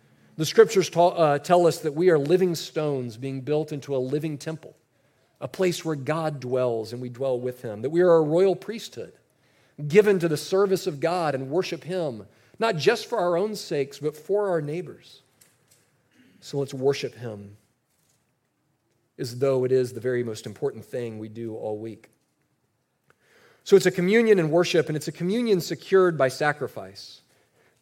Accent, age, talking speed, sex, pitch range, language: American, 40-59, 175 wpm, male, 130-175 Hz, English